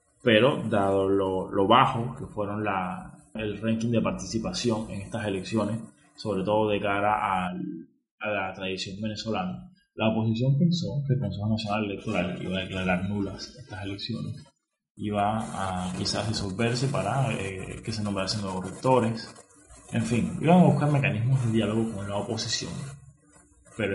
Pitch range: 100-115 Hz